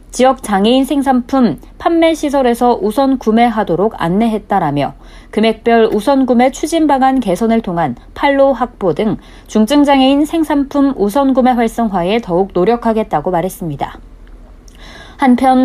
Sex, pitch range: female, 195-255 Hz